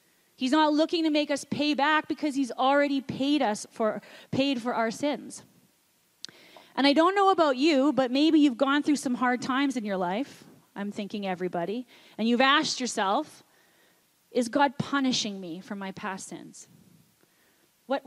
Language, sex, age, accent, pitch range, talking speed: English, female, 30-49, American, 220-290 Hz, 170 wpm